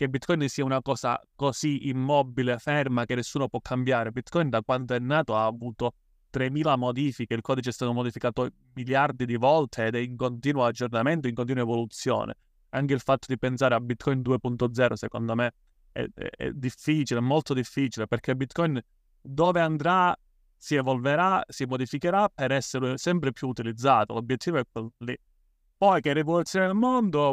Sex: male